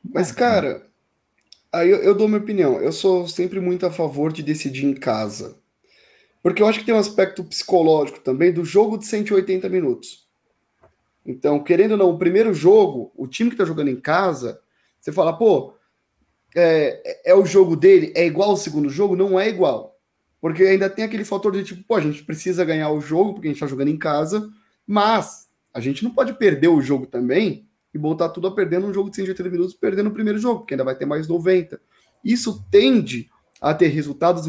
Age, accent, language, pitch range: 20-39, Brazilian, Portuguese, 155-210 Hz